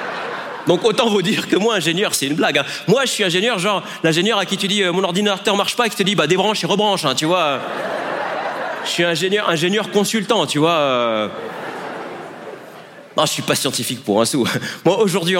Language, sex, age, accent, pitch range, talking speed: French, male, 40-59, French, 140-215 Hz, 220 wpm